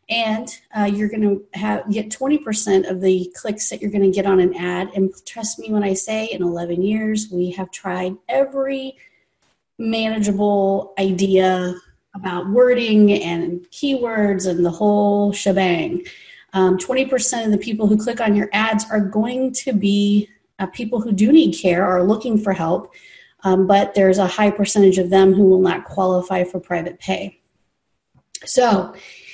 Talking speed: 170 wpm